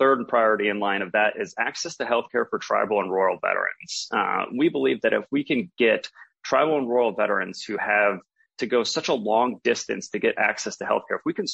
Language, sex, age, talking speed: English, male, 30-49, 225 wpm